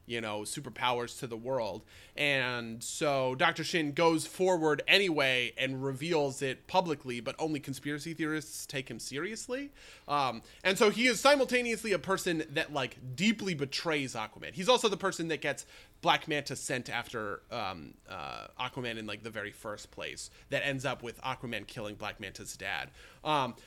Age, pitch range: 30-49, 125-170 Hz